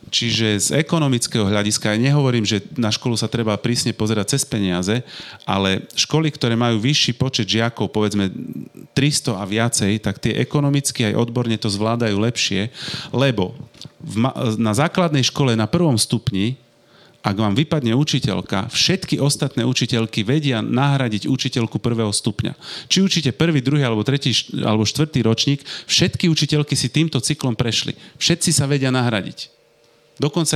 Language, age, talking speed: Slovak, 40-59, 145 wpm